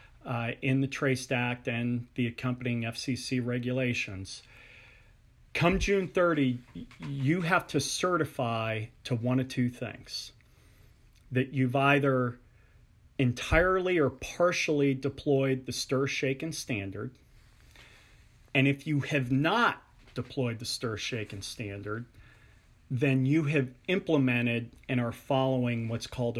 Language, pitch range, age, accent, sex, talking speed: English, 115-140 Hz, 40-59, American, male, 120 wpm